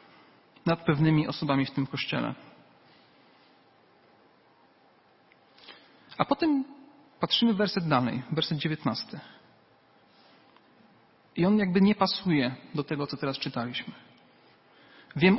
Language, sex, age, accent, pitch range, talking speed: Polish, male, 40-59, native, 145-195 Hz, 100 wpm